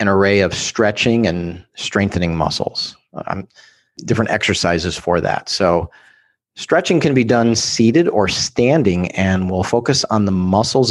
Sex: male